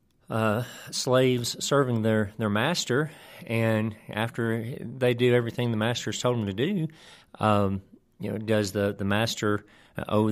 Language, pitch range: English, 105-130 Hz